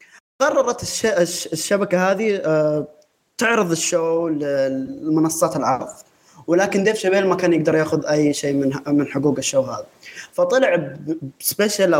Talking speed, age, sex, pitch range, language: 115 wpm, 20-39, male, 150-190 Hz, Arabic